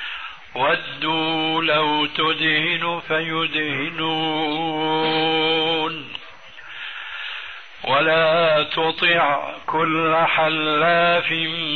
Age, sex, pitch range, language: 60-79, male, 155-165 Hz, Arabic